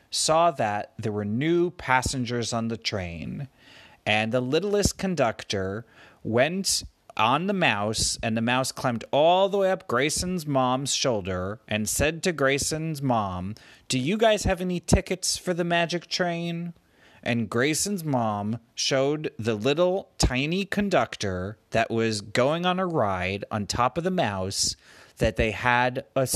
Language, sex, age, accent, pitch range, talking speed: English, male, 30-49, American, 110-165 Hz, 150 wpm